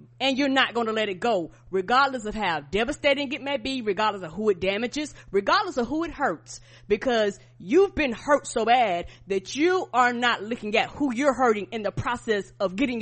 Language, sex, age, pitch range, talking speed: English, female, 30-49, 200-270 Hz, 210 wpm